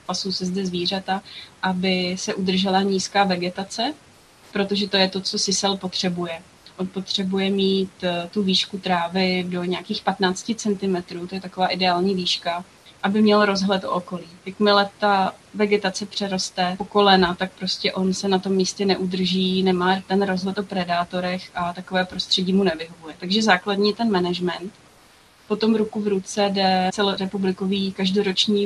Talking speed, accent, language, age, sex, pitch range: 150 wpm, native, Czech, 20-39, female, 185-200 Hz